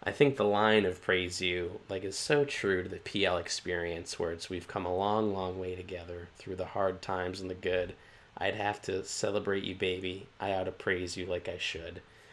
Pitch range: 90-100 Hz